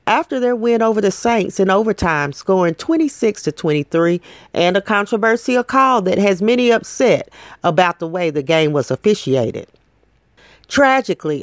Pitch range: 165-225 Hz